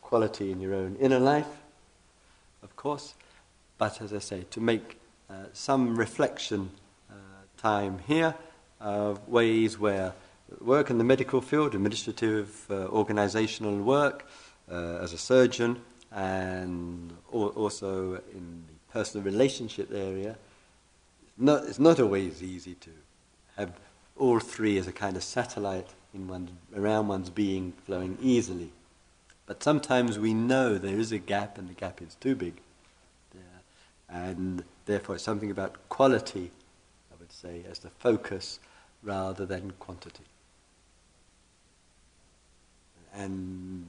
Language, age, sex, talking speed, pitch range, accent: English, 50-69, male, 125 wpm, 90-110 Hz, British